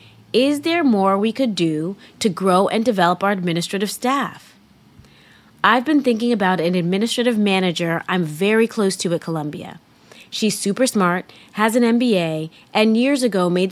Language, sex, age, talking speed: English, female, 30-49, 155 wpm